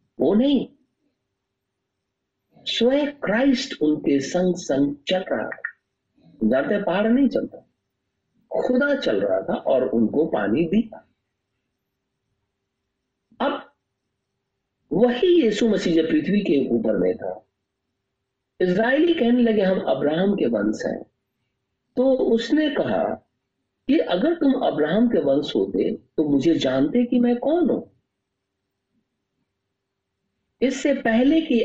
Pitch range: 155-255 Hz